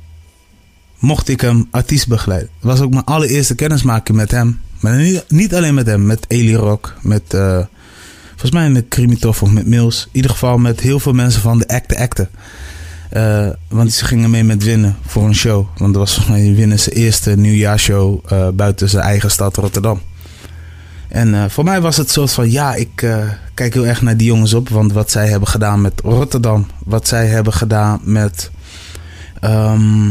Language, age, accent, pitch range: Dutch, 20-39, Dutch, 100-120 Hz